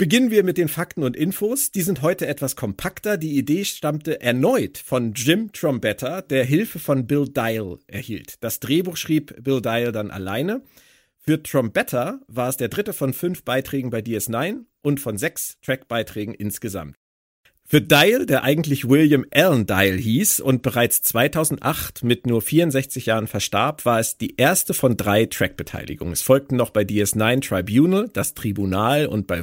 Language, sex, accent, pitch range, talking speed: German, male, German, 110-155 Hz, 165 wpm